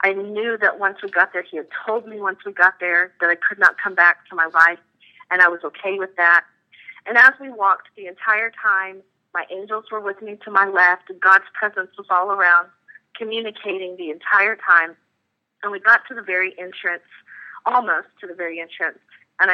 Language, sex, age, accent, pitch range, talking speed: English, female, 40-59, American, 180-215 Hz, 210 wpm